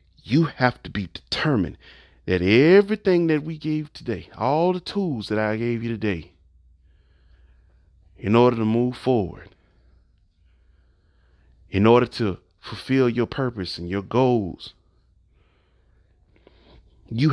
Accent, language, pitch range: American, English, 85-120 Hz